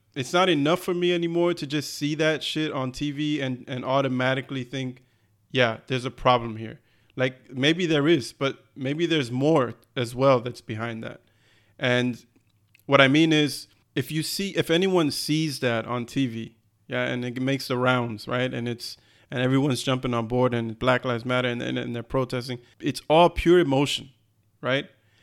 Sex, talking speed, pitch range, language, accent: male, 185 wpm, 125-150 Hz, English, American